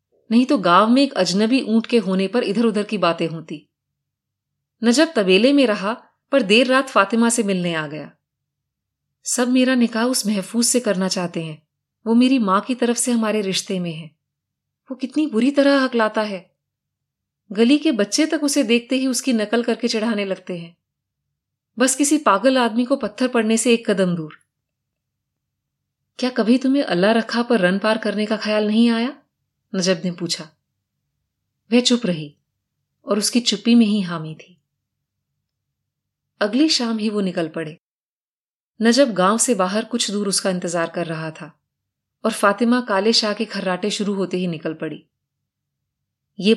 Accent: native